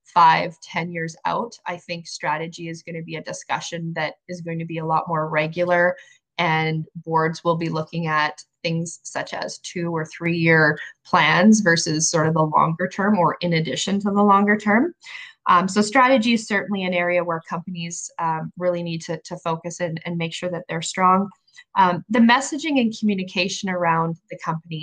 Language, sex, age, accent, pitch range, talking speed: English, female, 20-39, American, 160-190 Hz, 190 wpm